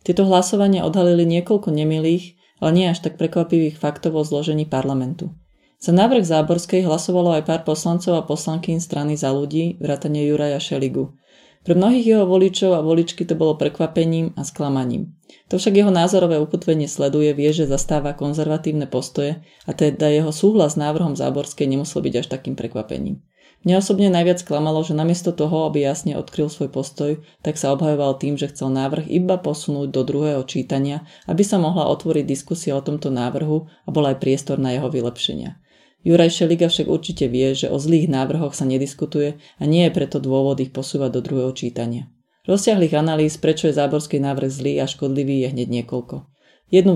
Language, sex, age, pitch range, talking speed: Slovak, female, 30-49, 140-170 Hz, 175 wpm